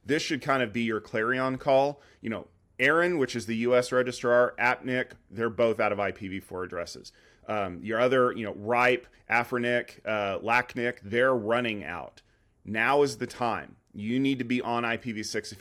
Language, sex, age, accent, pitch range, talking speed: English, male, 30-49, American, 100-125 Hz, 175 wpm